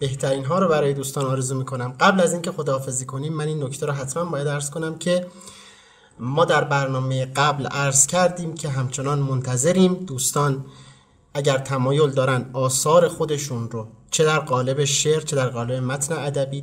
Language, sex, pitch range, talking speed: Persian, male, 125-165 Hz, 170 wpm